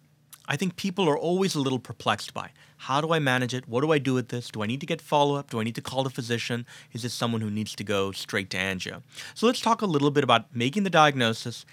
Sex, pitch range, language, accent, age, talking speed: male, 110-145 Hz, English, American, 30-49, 270 wpm